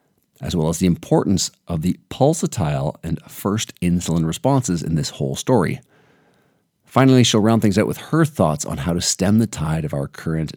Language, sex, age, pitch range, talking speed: English, male, 40-59, 80-115 Hz, 185 wpm